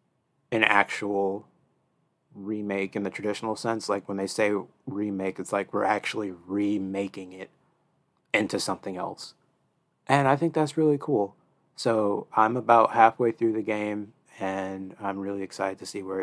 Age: 30-49